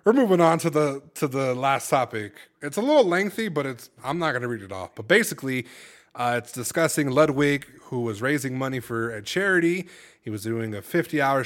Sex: male